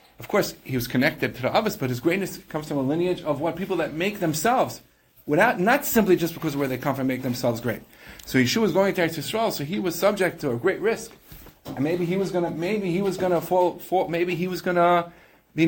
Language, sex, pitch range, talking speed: English, male, 165-205 Hz, 250 wpm